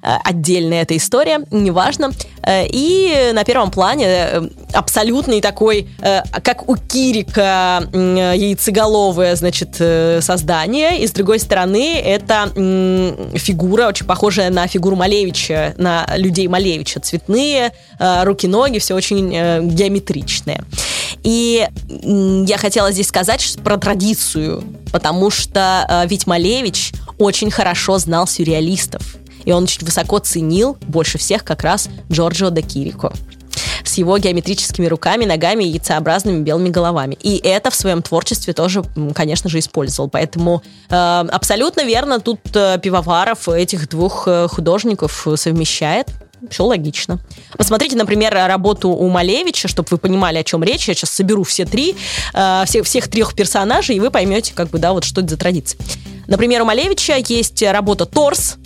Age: 20-39